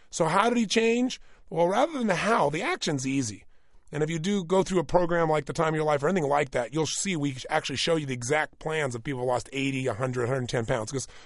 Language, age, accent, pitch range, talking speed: English, 30-49, American, 145-205 Hz, 260 wpm